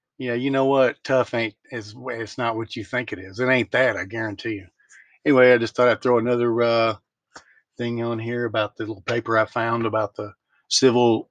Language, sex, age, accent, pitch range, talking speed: English, male, 40-59, American, 110-145 Hz, 205 wpm